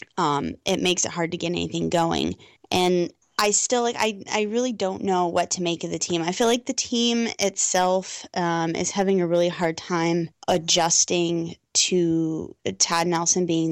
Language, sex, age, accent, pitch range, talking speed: English, female, 20-39, American, 165-190 Hz, 185 wpm